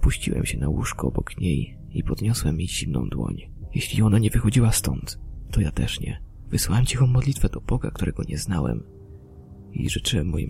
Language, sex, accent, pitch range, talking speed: Polish, male, native, 85-125 Hz, 175 wpm